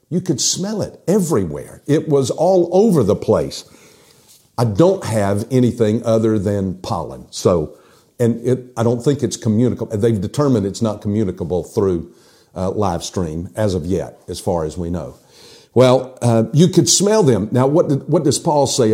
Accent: American